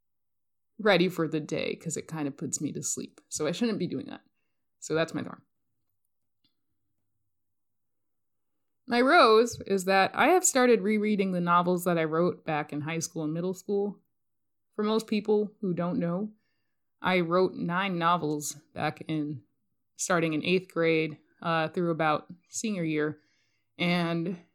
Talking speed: 155 wpm